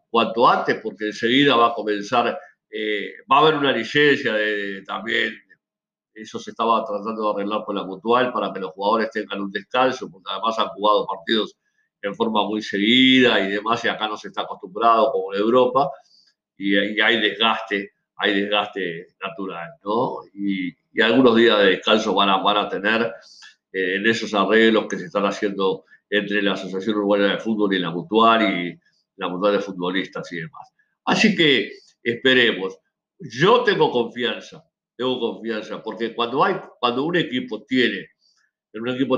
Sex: male